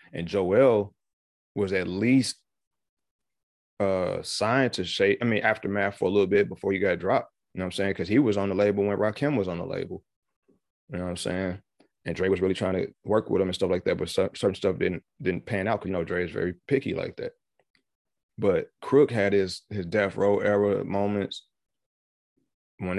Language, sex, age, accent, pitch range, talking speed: English, male, 30-49, American, 95-105 Hz, 210 wpm